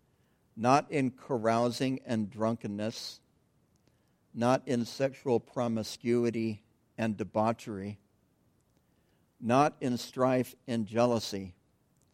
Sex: male